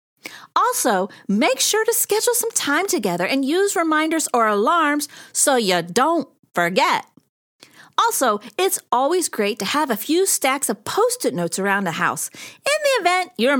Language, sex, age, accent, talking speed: English, female, 40-59, American, 160 wpm